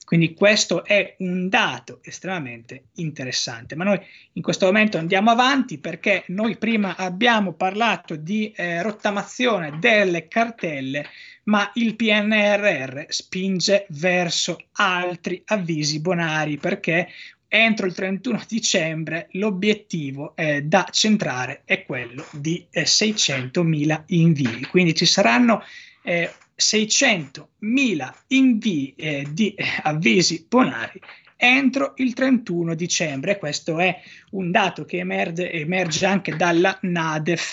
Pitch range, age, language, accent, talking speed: 165-210 Hz, 20-39, Italian, native, 115 wpm